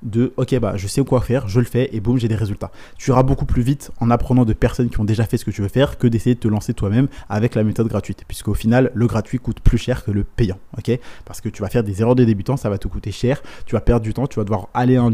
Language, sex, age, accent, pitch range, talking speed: French, male, 20-39, French, 105-120 Hz, 320 wpm